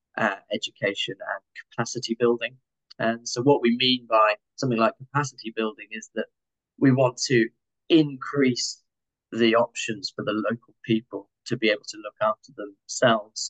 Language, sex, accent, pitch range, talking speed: English, male, British, 115-130 Hz, 150 wpm